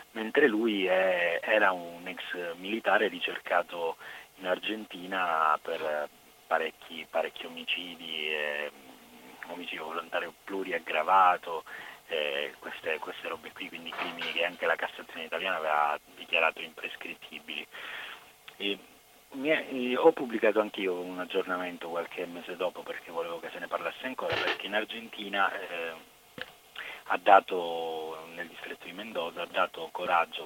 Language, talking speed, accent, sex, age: Italian, 125 wpm, native, male, 30-49